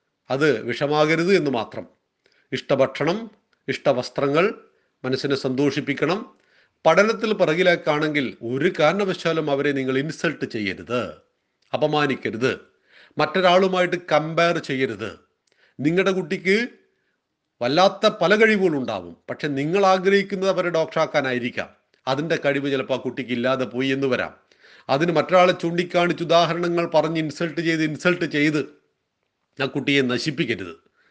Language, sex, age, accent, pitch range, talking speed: Malayalam, male, 40-59, native, 135-180 Hz, 95 wpm